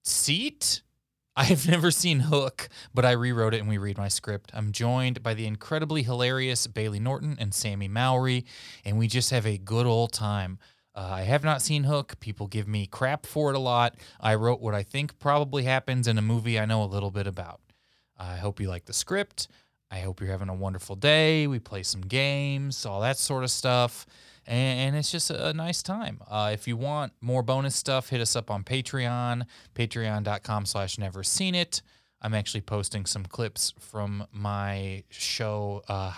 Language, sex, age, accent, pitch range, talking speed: English, male, 20-39, American, 100-130 Hz, 195 wpm